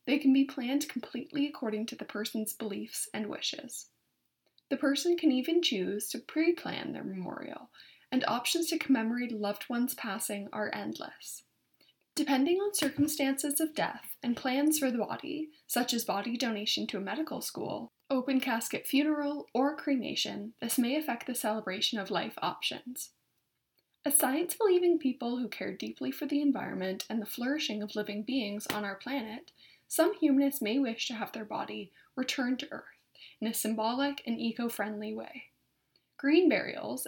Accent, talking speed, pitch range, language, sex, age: American, 160 wpm, 220-285 Hz, English, female, 10-29